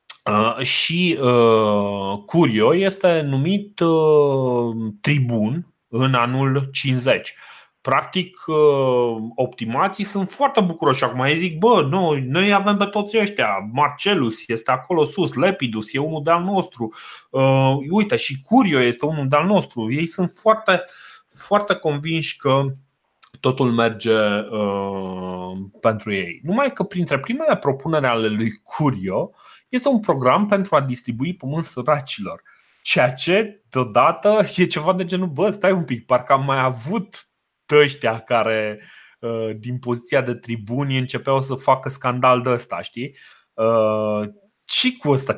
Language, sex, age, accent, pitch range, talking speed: Romanian, male, 30-49, native, 120-175 Hz, 125 wpm